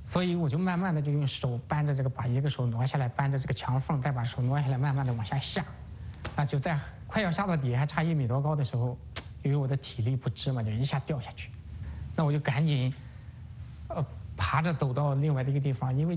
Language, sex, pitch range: English, male, 125-150 Hz